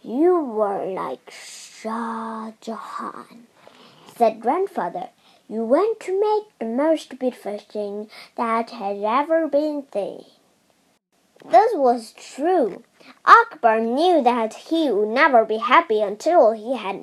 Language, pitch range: Chinese, 230-360 Hz